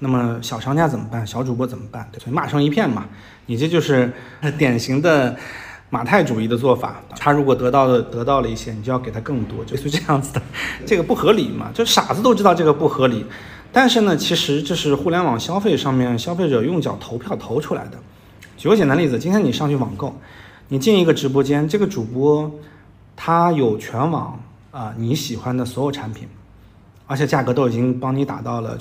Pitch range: 115-150 Hz